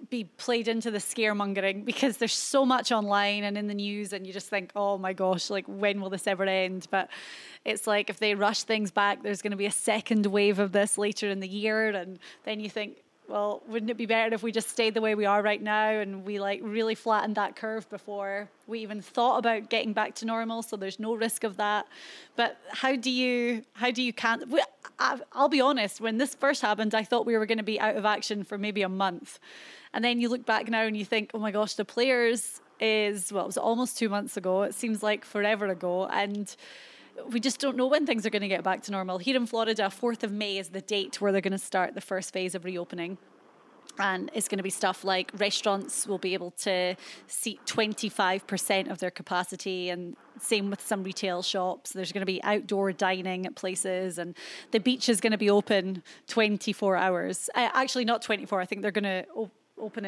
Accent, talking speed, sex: British, 230 wpm, female